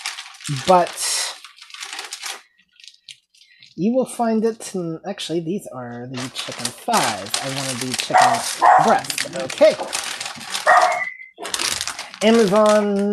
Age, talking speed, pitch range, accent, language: 30-49, 85 wpm, 170-225 Hz, American, English